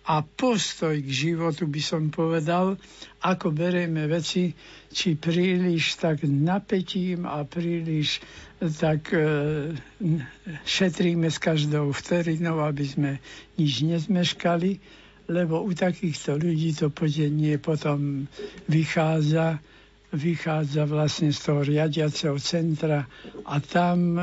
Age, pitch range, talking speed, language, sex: 60-79, 150-175 Hz, 105 wpm, Slovak, male